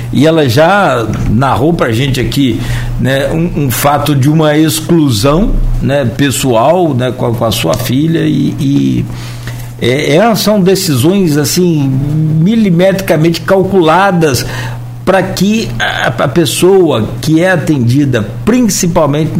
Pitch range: 120-160 Hz